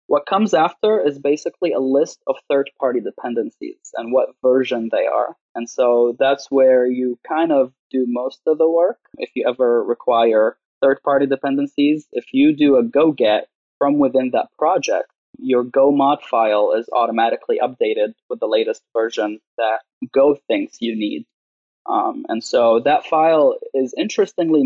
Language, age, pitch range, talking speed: English, 20-39, 120-160 Hz, 160 wpm